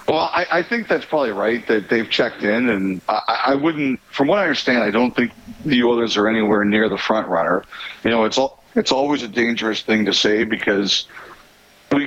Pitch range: 110-130 Hz